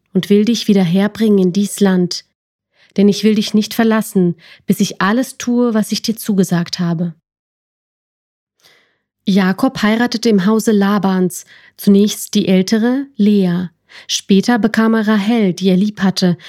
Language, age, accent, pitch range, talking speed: German, 30-49, German, 185-220 Hz, 140 wpm